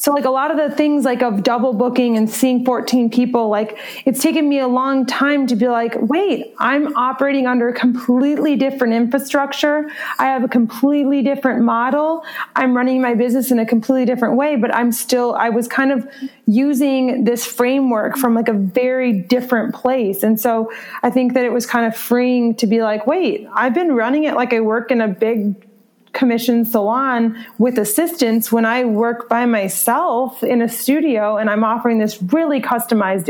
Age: 30-49